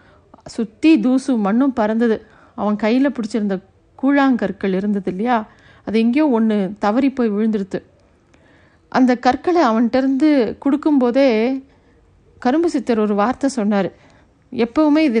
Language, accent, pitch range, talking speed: Tamil, native, 215-265 Hz, 105 wpm